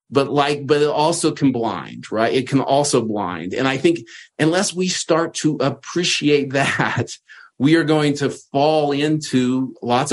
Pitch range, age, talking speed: 125-155 Hz, 40-59, 165 wpm